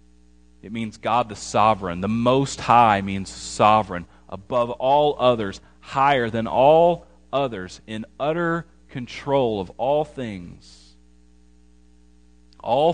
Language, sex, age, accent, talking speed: English, male, 40-59, American, 110 wpm